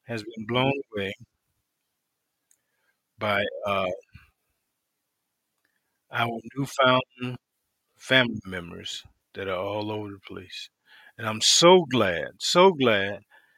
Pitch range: 115-145 Hz